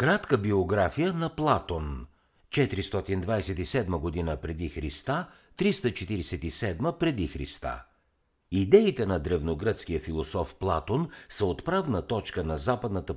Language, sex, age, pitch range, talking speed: Bulgarian, male, 60-79, 80-125 Hz, 95 wpm